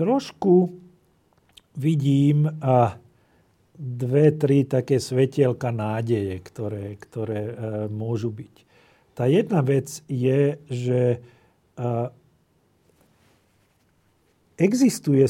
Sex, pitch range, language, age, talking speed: male, 120-145 Hz, Slovak, 50-69, 65 wpm